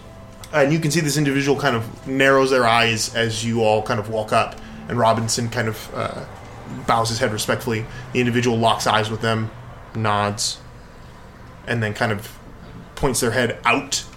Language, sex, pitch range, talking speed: English, male, 110-130 Hz, 180 wpm